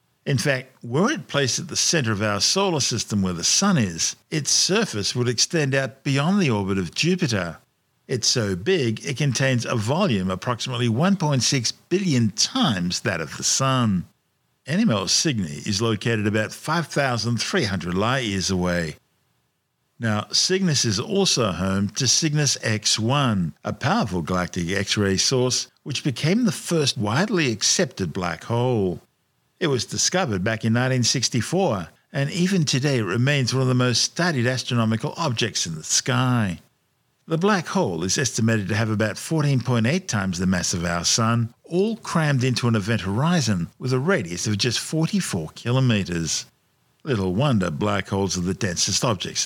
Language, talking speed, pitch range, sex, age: English, 155 wpm, 100-140 Hz, male, 50-69